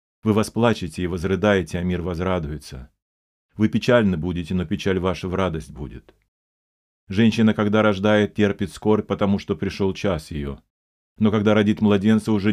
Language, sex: Russian, male